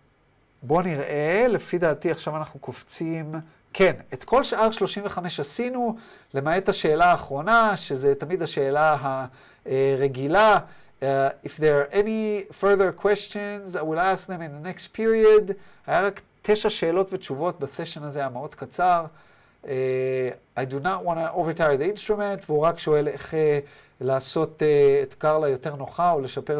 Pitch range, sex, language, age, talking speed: 140-190 Hz, male, Hebrew, 40-59, 150 wpm